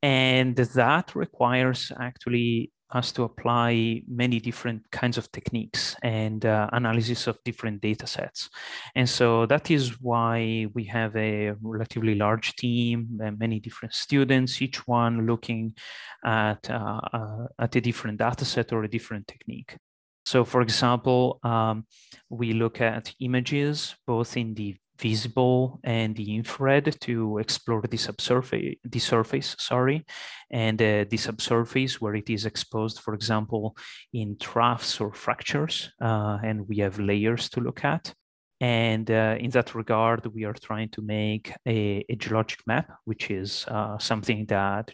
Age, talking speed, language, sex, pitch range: 30-49, 150 wpm, English, male, 110-120 Hz